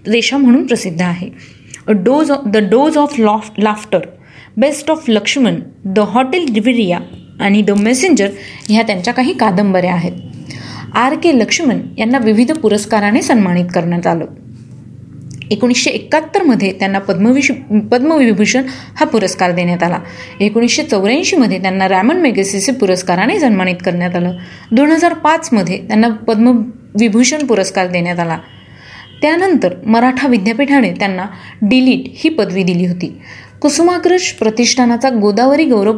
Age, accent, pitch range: 30-49, native, 195-270 Hz